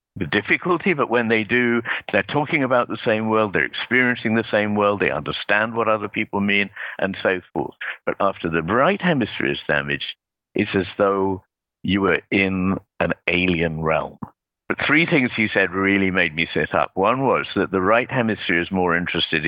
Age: 60-79